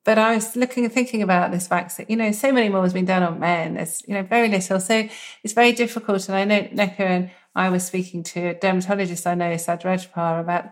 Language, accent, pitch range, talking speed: English, British, 175-205 Hz, 240 wpm